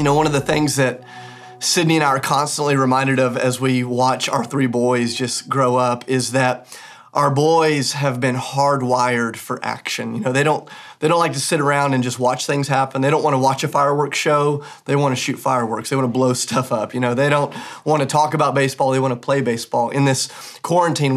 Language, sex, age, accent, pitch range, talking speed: English, male, 30-49, American, 130-145 Hz, 235 wpm